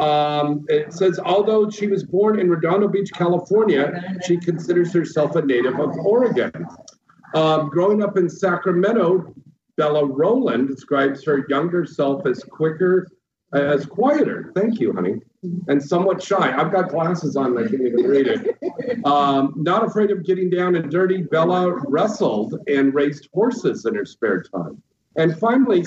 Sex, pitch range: male, 140-190 Hz